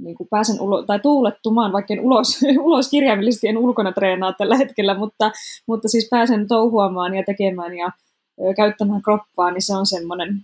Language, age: Finnish, 20-39